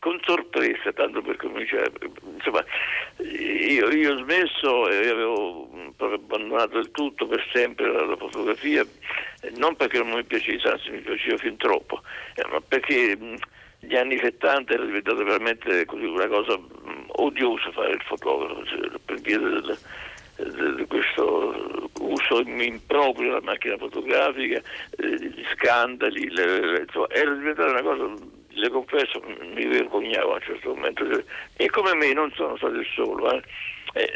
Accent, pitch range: native, 345-435 Hz